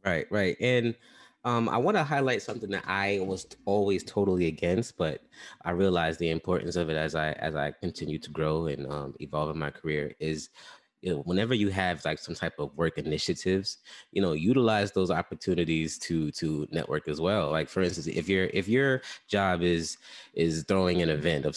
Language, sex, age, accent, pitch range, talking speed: English, male, 20-39, American, 80-110 Hz, 190 wpm